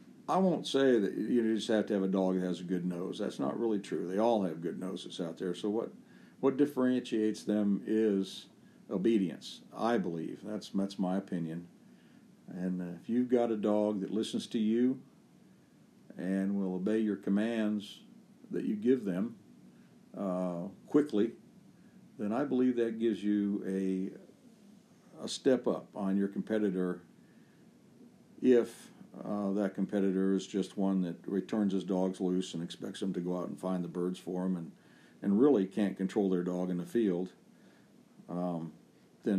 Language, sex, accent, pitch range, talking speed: English, male, American, 90-105 Hz, 170 wpm